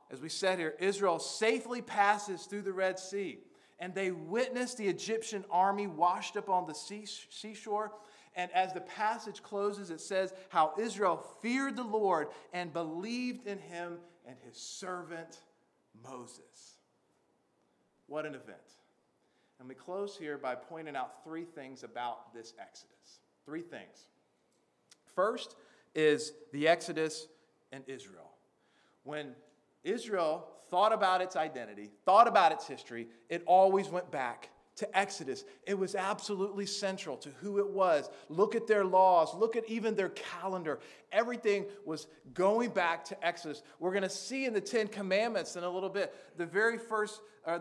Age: 40-59